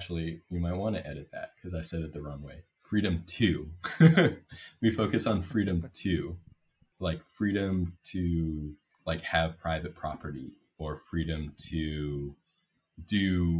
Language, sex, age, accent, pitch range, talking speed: English, male, 20-39, American, 70-85 Hz, 140 wpm